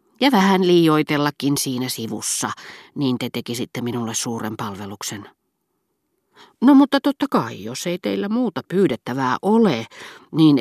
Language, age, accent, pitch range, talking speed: Finnish, 40-59, native, 125-165 Hz, 125 wpm